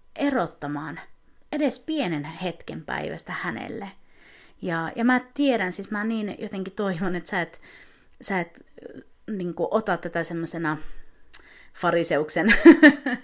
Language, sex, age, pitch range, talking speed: Finnish, female, 30-49, 160-245 Hz, 115 wpm